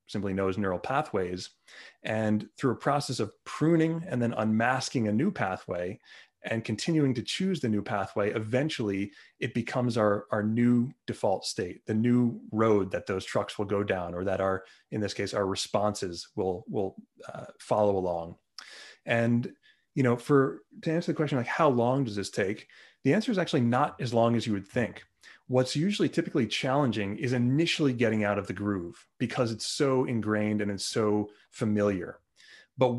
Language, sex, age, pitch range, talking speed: English, male, 30-49, 105-130 Hz, 180 wpm